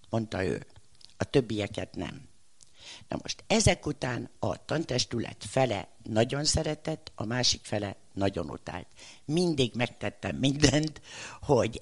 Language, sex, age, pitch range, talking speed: Hungarian, female, 60-79, 100-125 Hz, 115 wpm